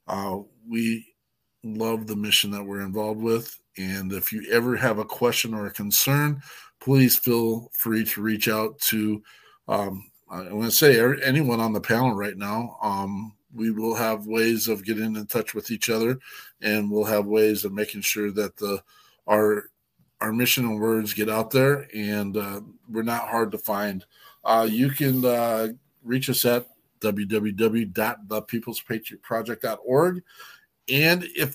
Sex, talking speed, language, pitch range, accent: male, 155 wpm, English, 105-130 Hz, American